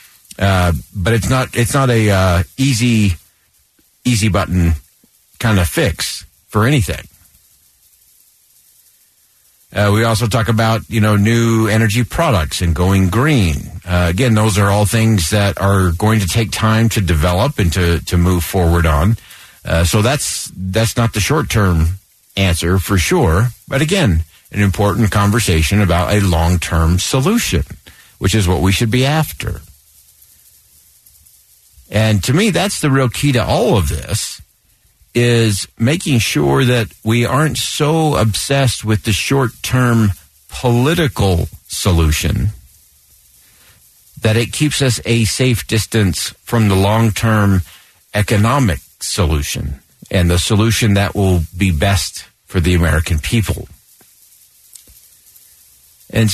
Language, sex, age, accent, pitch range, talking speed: English, male, 50-69, American, 90-120 Hz, 135 wpm